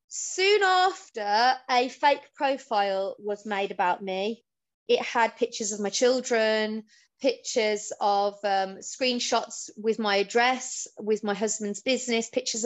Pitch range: 210-255 Hz